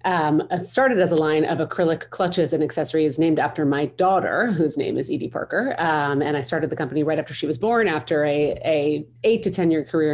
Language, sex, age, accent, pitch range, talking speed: English, female, 30-49, American, 150-175 Hz, 225 wpm